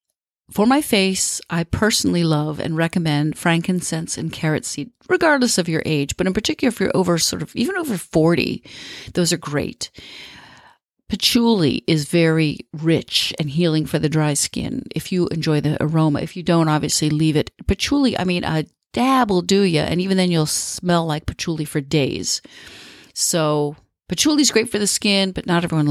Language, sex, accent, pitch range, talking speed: English, female, American, 155-195 Hz, 180 wpm